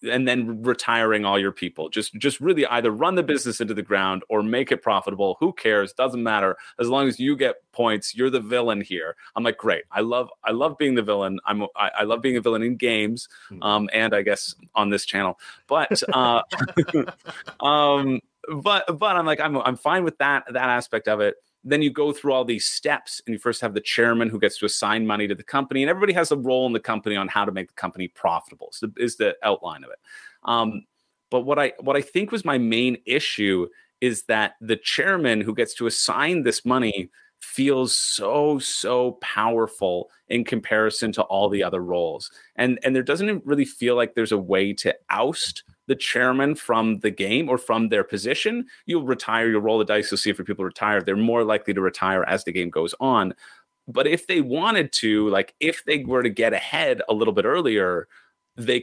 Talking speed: 215 wpm